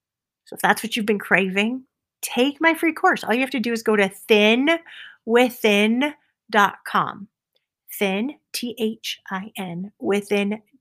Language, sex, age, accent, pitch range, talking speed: English, female, 30-49, American, 185-230 Hz, 120 wpm